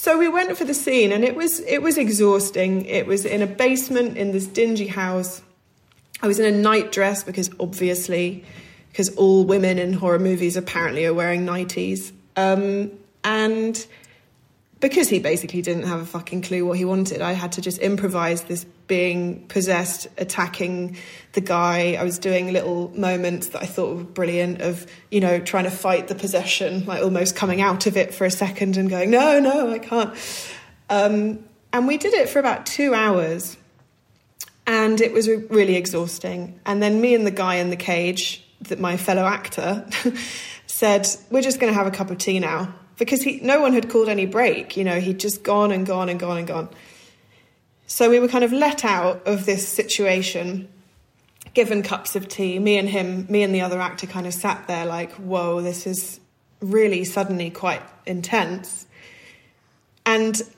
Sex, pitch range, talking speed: female, 180-215 Hz, 185 wpm